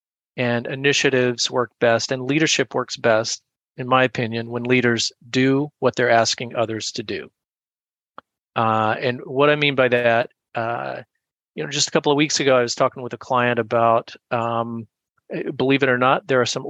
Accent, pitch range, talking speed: American, 120-145 Hz, 185 wpm